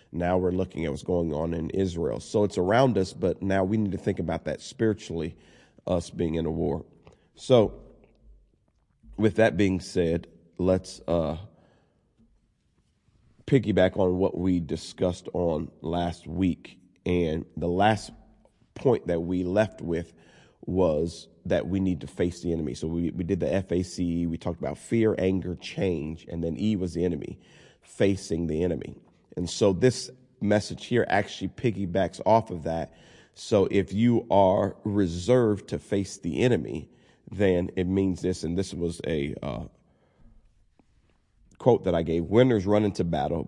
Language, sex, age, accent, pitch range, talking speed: English, male, 40-59, American, 85-105 Hz, 160 wpm